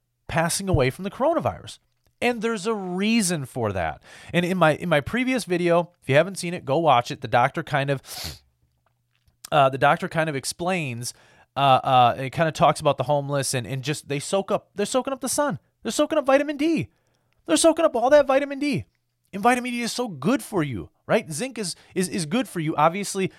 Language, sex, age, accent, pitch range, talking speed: English, male, 30-49, American, 140-215 Hz, 220 wpm